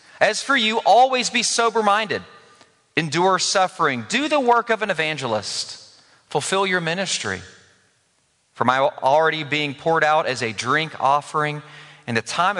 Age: 40-59